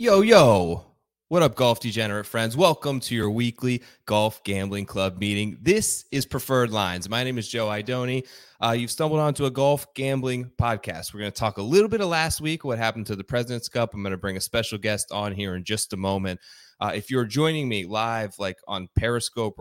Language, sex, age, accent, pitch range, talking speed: English, male, 20-39, American, 105-130 Hz, 215 wpm